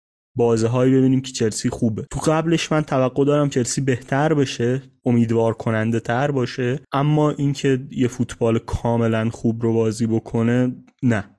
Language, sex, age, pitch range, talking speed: Persian, male, 30-49, 110-135 Hz, 150 wpm